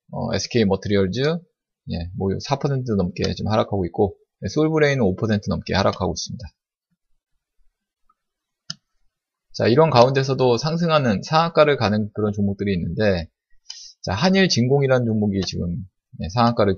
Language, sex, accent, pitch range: Korean, male, native, 100-145 Hz